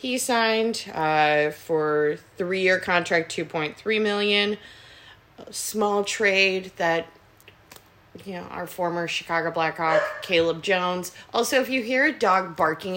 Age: 30-49